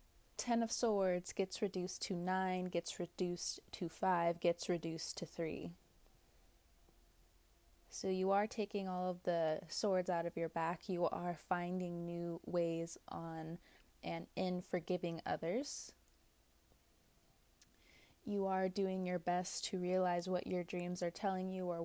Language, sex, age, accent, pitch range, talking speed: English, female, 20-39, American, 170-195 Hz, 140 wpm